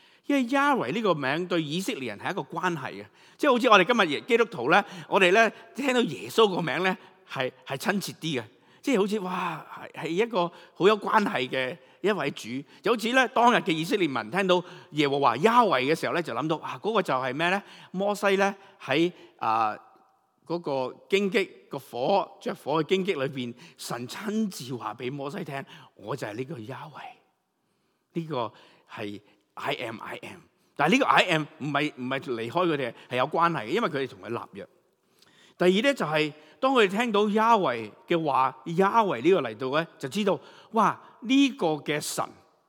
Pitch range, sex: 145-215 Hz, male